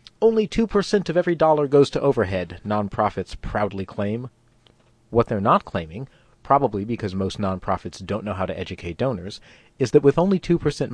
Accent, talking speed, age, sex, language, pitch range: American, 165 wpm, 40-59, male, English, 100-130 Hz